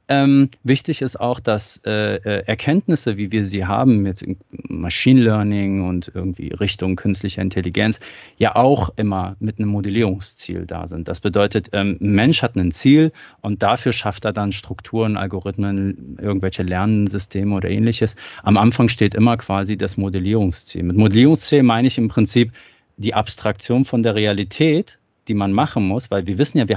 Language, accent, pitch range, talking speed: German, German, 95-120 Hz, 160 wpm